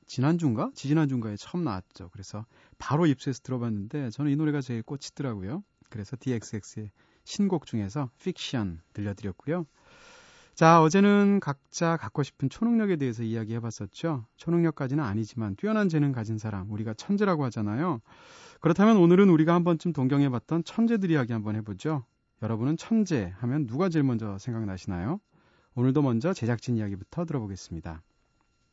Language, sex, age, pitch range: Korean, male, 40-59, 115-160 Hz